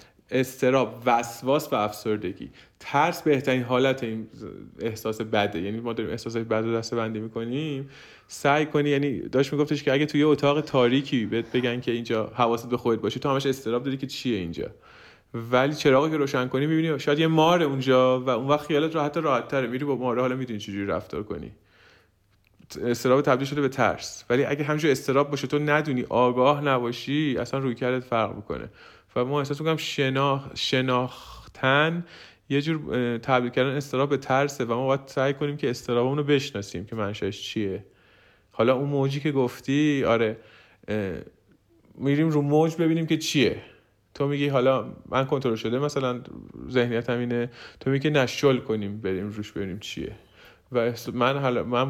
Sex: male